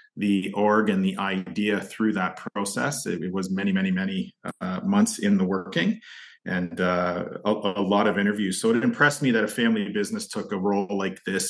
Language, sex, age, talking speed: English, male, 30-49, 200 wpm